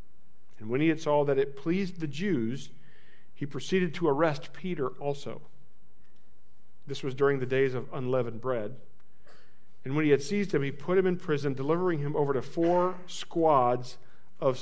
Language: English